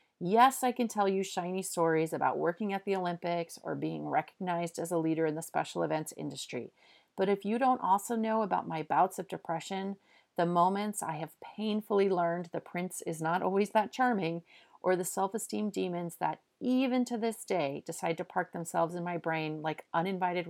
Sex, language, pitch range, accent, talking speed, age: female, English, 160-200 Hz, American, 190 wpm, 40-59